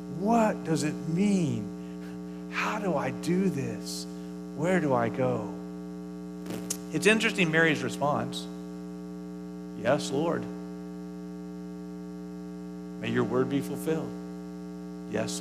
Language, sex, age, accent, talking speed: English, male, 40-59, American, 95 wpm